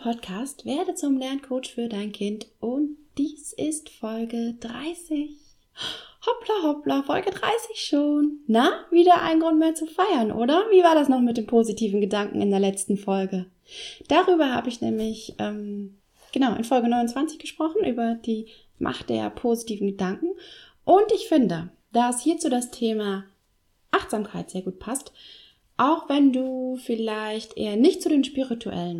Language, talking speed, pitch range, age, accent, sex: German, 150 wpm, 210-315 Hz, 20-39, German, female